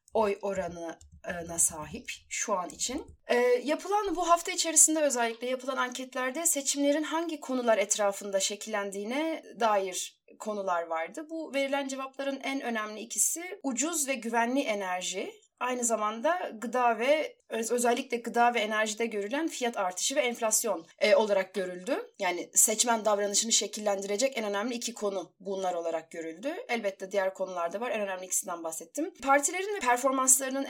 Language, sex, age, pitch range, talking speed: Turkish, female, 30-49, 210-280 Hz, 140 wpm